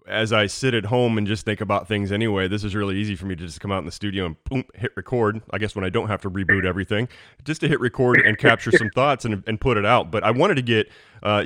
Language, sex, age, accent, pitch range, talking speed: English, male, 30-49, American, 90-110 Hz, 295 wpm